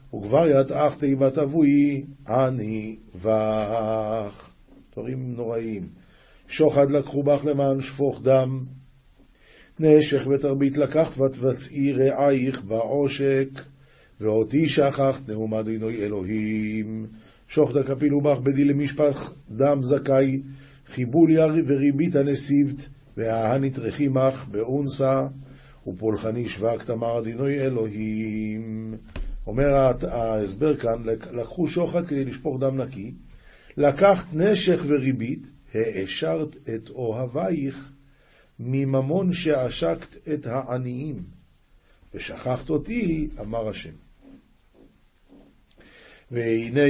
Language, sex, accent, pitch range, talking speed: Hebrew, male, native, 115-145 Hz, 90 wpm